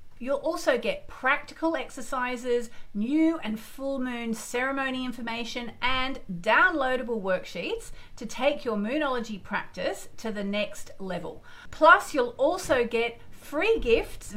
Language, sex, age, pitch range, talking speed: English, female, 40-59, 195-280 Hz, 120 wpm